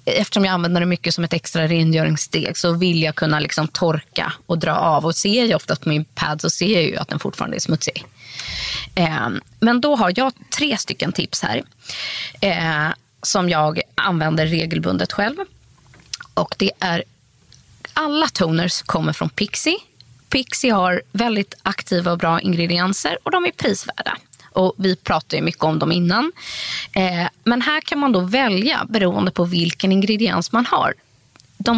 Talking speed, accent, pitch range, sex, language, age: 165 wpm, native, 165-230 Hz, female, Swedish, 20-39